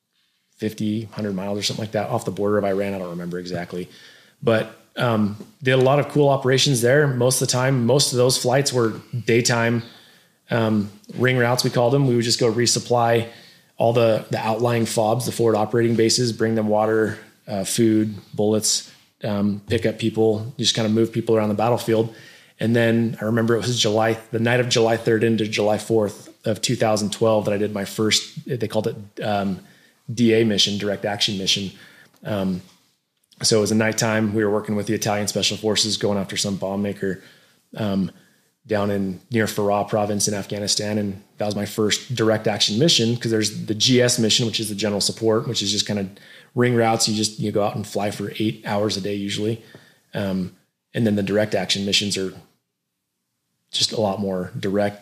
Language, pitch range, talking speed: English, 100-115 Hz, 200 wpm